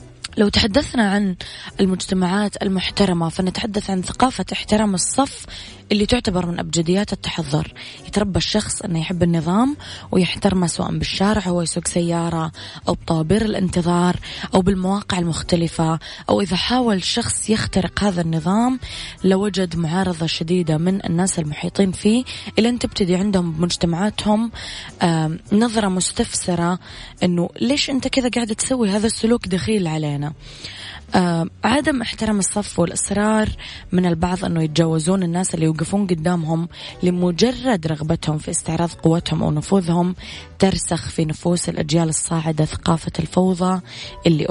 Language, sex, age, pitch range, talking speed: English, female, 20-39, 165-200 Hz, 120 wpm